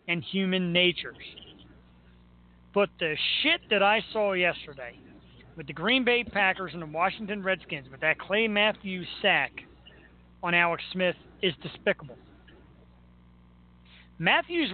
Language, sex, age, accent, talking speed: English, male, 40-59, American, 120 wpm